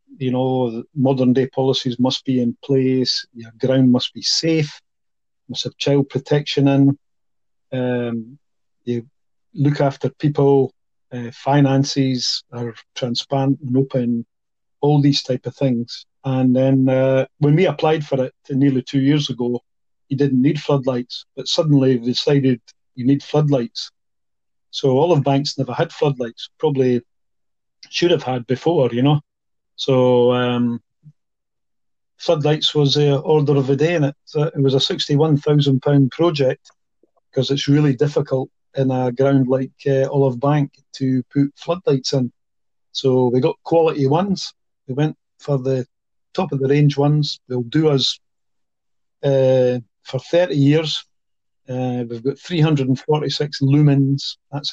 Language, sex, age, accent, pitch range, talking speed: English, male, 40-59, British, 125-145 Hz, 140 wpm